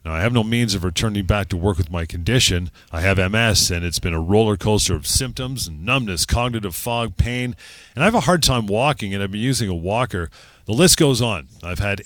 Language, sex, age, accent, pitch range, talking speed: English, male, 40-59, American, 95-130 Hz, 230 wpm